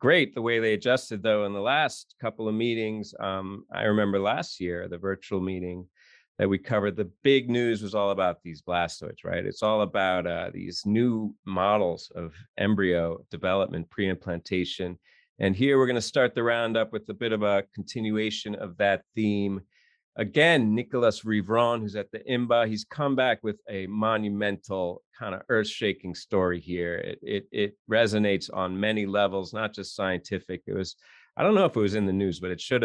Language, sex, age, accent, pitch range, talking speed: English, male, 40-59, American, 95-110 Hz, 185 wpm